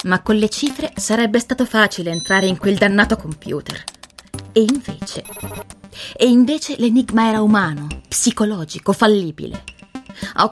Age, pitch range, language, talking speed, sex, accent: 20-39, 175-225 Hz, Italian, 125 wpm, female, native